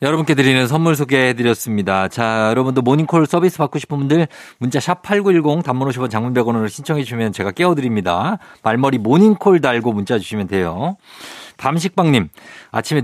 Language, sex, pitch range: Korean, male, 110-160 Hz